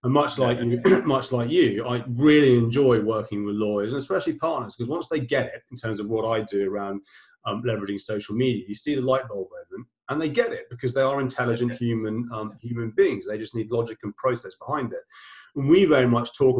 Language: English